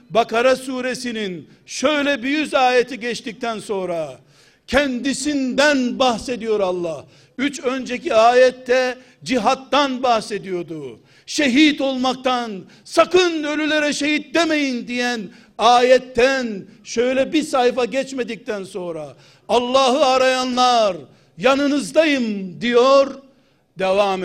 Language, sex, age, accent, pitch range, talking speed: Turkish, male, 60-79, native, 225-260 Hz, 85 wpm